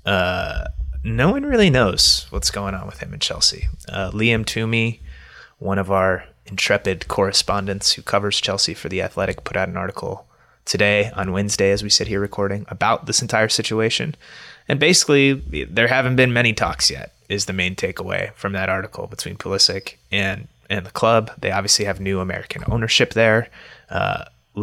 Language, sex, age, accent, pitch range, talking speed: English, male, 20-39, American, 95-110 Hz, 175 wpm